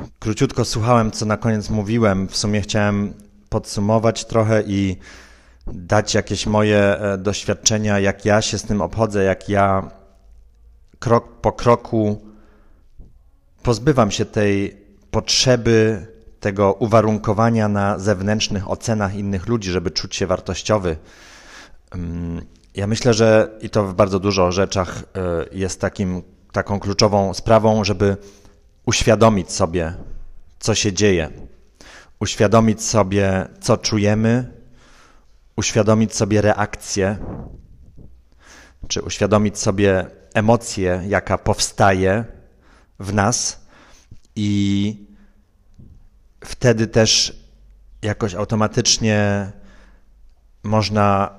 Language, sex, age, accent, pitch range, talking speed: Polish, male, 30-49, native, 95-110 Hz, 95 wpm